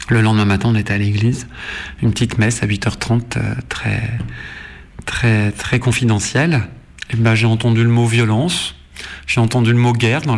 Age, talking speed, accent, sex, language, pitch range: 40-59, 170 wpm, French, male, French, 110-125 Hz